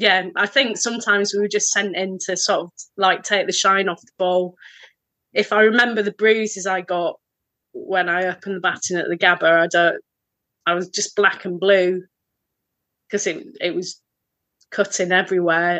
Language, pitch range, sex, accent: English, 175-200 Hz, female, British